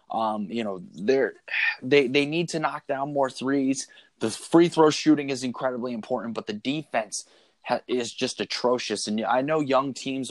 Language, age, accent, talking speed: English, 20-39, American, 180 wpm